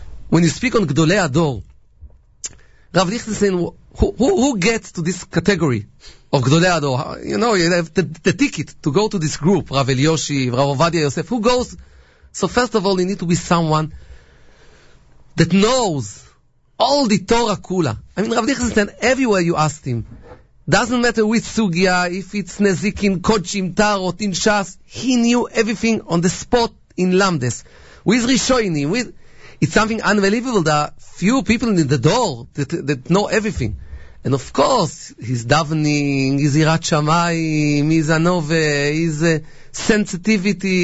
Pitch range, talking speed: 160-210 Hz, 155 wpm